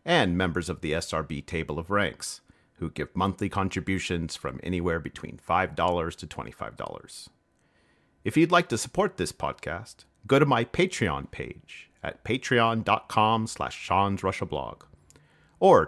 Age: 40-59